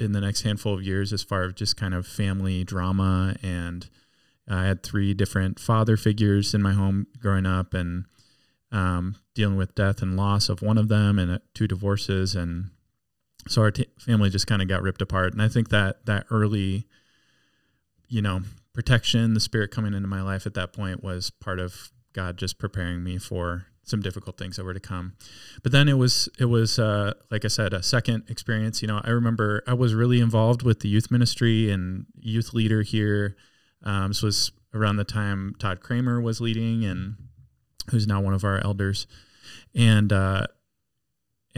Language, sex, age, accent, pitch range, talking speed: English, male, 20-39, American, 95-110 Hz, 190 wpm